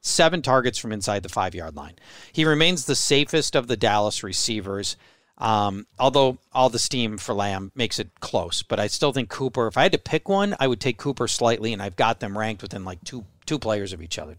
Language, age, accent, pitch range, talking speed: English, 40-59, American, 110-160 Hz, 225 wpm